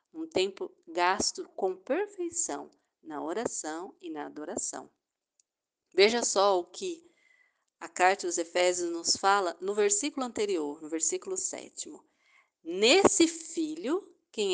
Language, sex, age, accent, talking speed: Portuguese, female, 50-69, Brazilian, 120 wpm